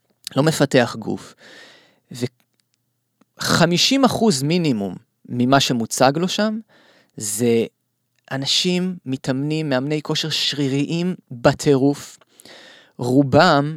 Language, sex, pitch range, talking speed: English, male, 115-145 Hz, 80 wpm